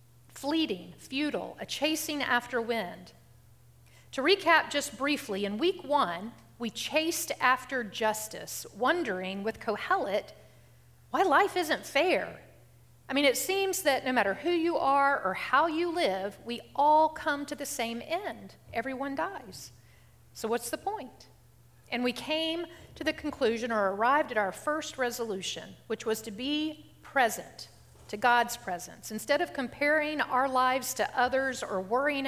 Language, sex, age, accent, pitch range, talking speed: English, female, 50-69, American, 220-295 Hz, 150 wpm